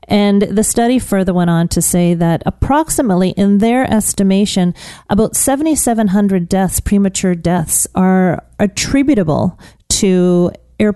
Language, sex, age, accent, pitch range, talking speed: English, female, 40-59, American, 175-210 Hz, 120 wpm